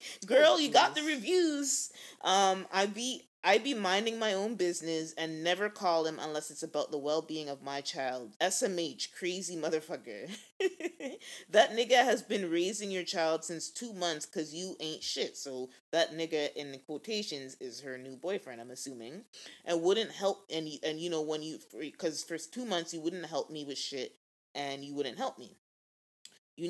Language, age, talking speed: English, 30-49, 180 wpm